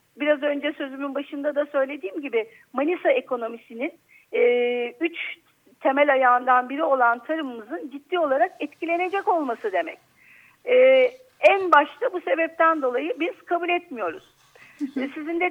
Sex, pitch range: female, 270-340 Hz